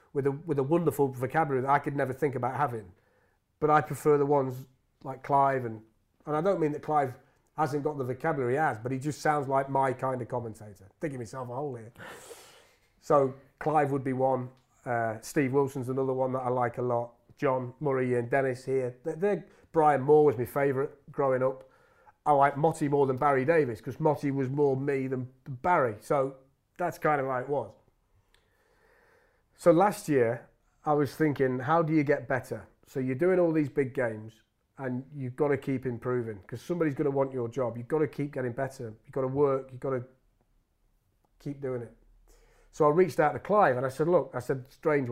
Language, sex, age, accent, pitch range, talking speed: English, male, 30-49, British, 125-150 Hz, 210 wpm